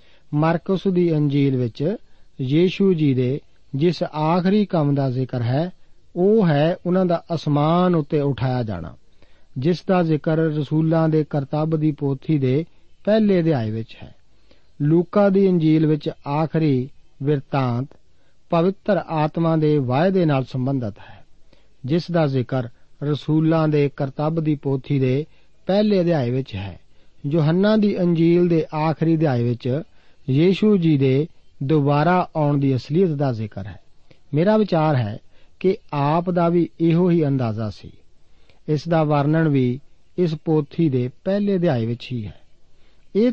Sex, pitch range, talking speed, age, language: male, 135-170 Hz, 115 wpm, 50-69, Punjabi